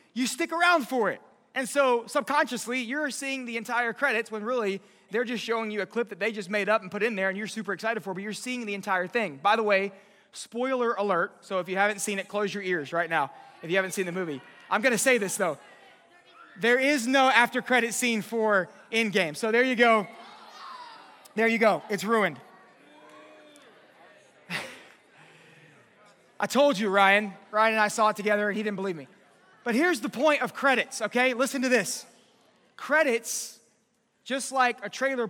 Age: 30-49